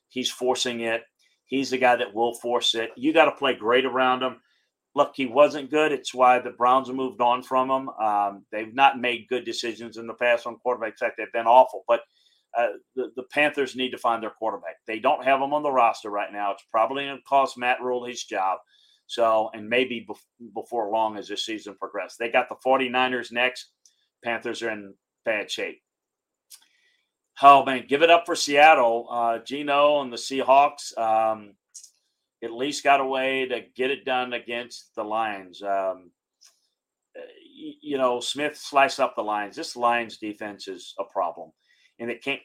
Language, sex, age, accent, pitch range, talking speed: English, male, 40-59, American, 115-140 Hz, 190 wpm